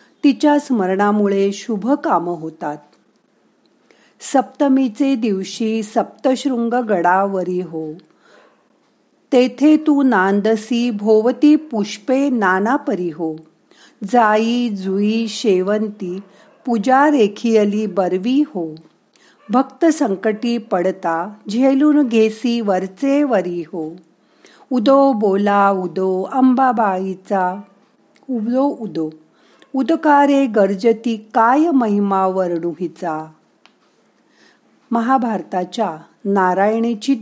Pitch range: 185-250 Hz